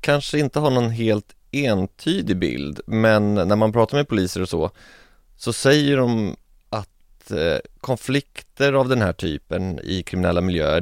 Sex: male